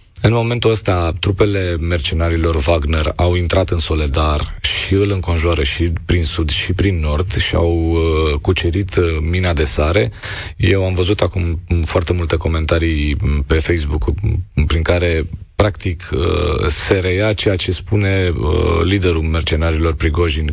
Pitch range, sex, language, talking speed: 80-95 Hz, male, Romanian, 130 wpm